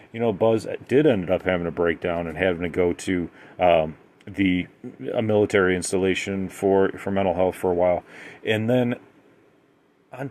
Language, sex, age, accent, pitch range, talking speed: English, male, 30-49, American, 95-135 Hz, 170 wpm